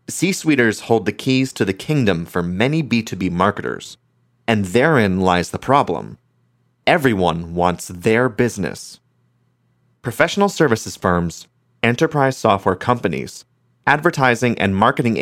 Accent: American